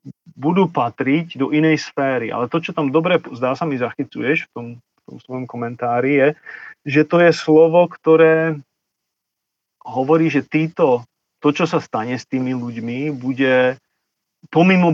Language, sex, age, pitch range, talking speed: Slovak, male, 40-59, 120-150 Hz, 155 wpm